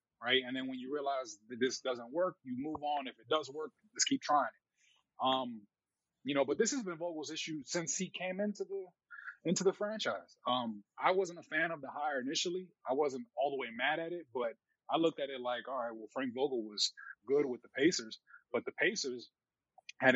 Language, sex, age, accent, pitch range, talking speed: English, male, 20-39, American, 130-185 Hz, 225 wpm